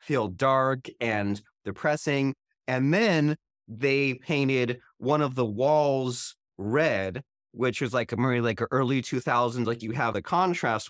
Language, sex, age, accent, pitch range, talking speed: English, male, 30-49, American, 120-140 Hz, 155 wpm